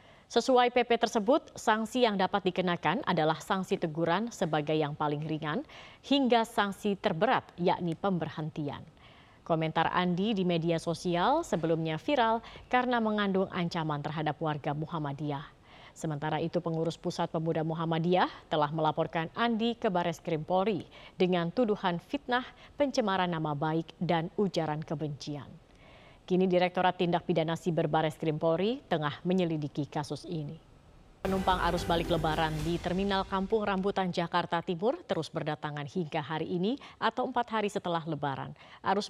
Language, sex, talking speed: Indonesian, female, 130 wpm